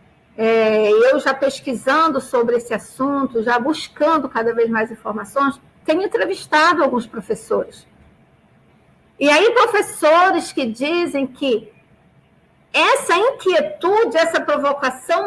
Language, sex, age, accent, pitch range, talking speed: Portuguese, female, 50-69, Brazilian, 240-335 Hz, 100 wpm